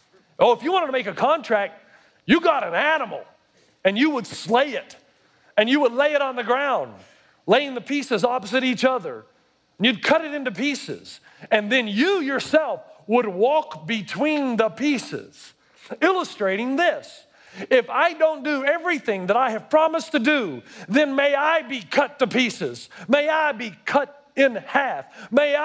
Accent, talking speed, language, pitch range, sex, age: American, 170 wpm, English, 205-285 Hz, male, 40-59